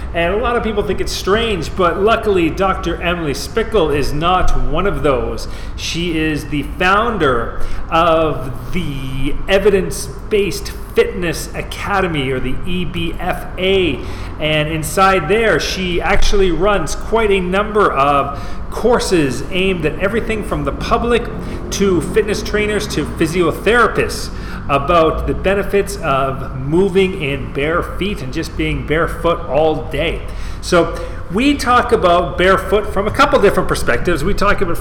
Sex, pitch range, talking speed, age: male, 140-190 Hz, 135 wpm, 40-59